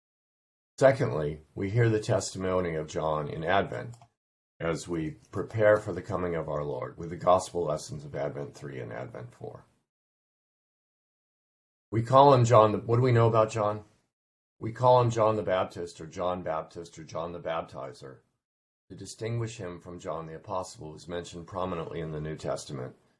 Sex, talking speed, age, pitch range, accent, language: male, 175 wpm, 50-69, 80-110 Hz, American, English